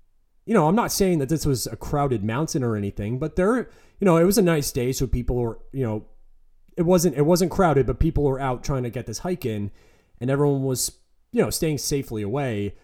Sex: male